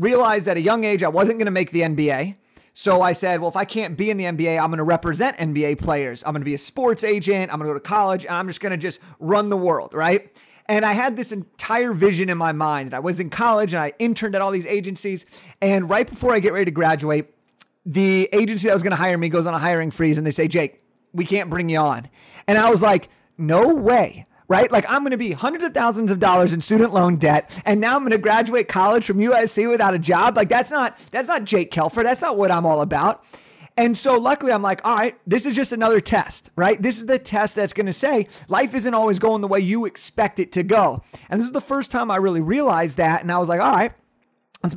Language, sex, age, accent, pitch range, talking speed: English, male, 30-49, American, 170-220 Hz, 265 wpm